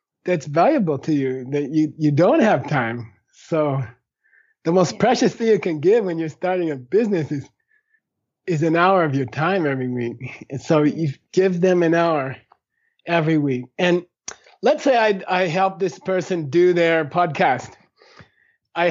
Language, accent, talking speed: German, American, 170 wpm